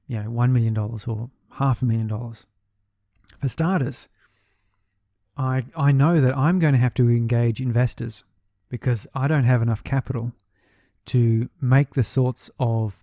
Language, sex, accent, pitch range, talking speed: English, male, Australian, 105-130 Hz, 155 wpm